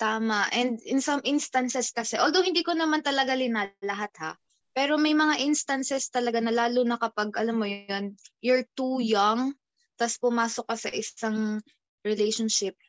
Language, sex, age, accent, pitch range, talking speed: Filipino, female, 20-39, native, 210-260 Hz, 160 wpm